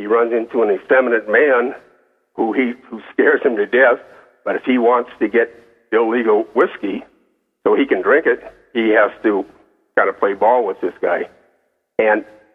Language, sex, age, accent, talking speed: English, male, 60-79, American, 175 wpm